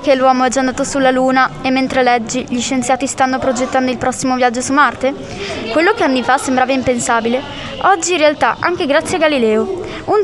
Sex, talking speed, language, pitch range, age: female, 195 wpm, Italian, 250-305 Hz, 20-39